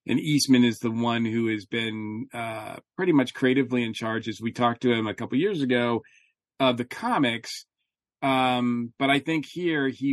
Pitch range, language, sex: 115-140 Hz, English, male